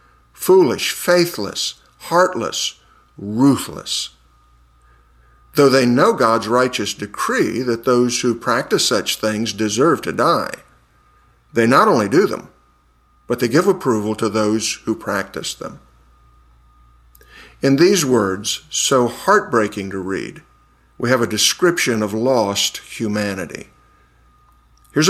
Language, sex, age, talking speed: English, male, 50-69, 115 wpm